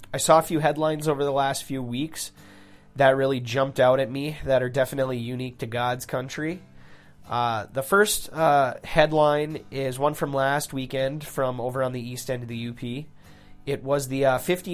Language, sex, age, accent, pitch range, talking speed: English, male, 20-39, American, 125-150 Hz, 185 wpm